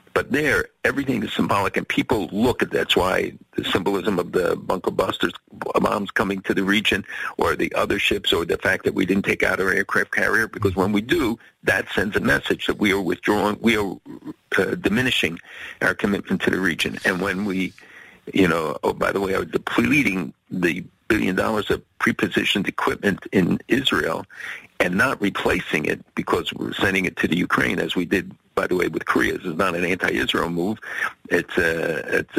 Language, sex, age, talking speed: English, male, 50-69, 195 wpm